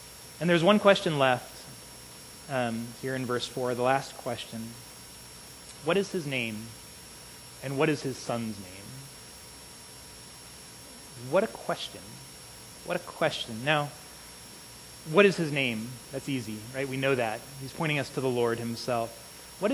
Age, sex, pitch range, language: 30-49, male, 120-170 Hz, English